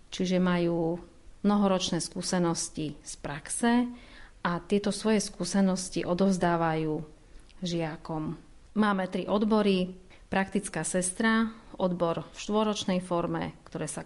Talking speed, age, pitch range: 100 wpm, 40-59, 170-205 Hz